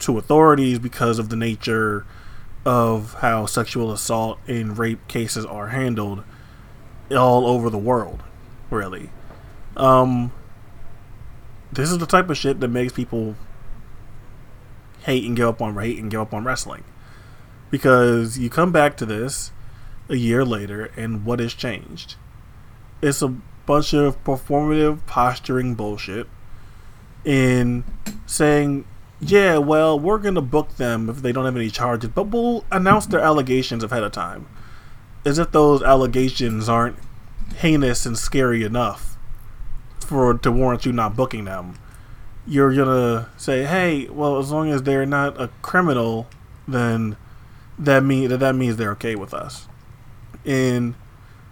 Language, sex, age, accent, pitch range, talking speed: English, male, 20-39, American, 110-130 Hz, 140 wpm